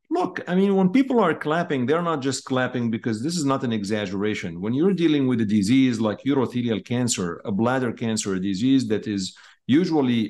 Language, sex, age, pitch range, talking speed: English, male, 50-69, 110-145 Hz, 200 wpm